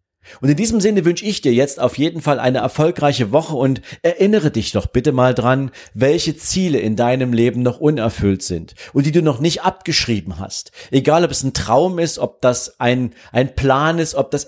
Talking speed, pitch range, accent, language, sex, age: 205 wpm, 115-150 Hz, German, German, male, 40-59